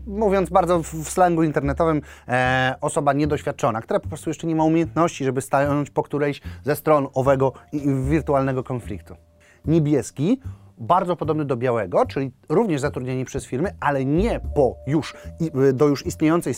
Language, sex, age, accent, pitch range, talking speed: Polish, male, 30-49, native, 120-155 Hz, 160 wpm